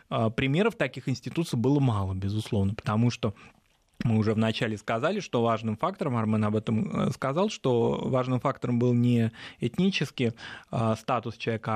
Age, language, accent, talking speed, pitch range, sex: 20-39, Russian, native, 140 wpm, 115-145 Hz, male